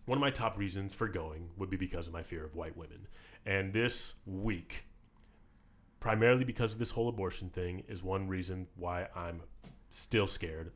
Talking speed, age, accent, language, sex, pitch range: 185 wpm, 30-49, American, English, male, 90-110 Hz